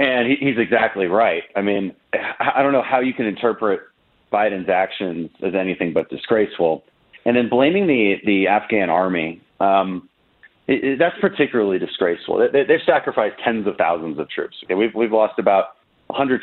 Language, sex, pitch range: English, male, 105-140 Hz